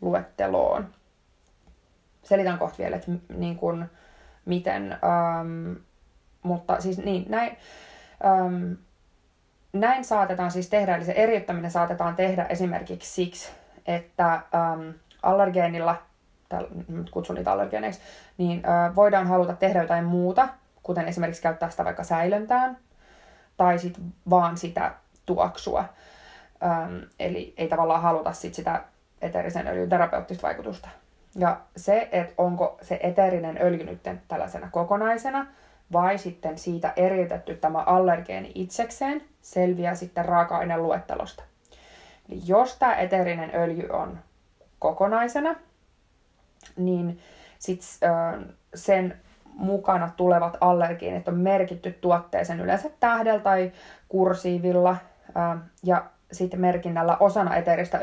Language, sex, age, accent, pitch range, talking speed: Finnish, female, 20-39, native, 170-190 Hz, 110 wpm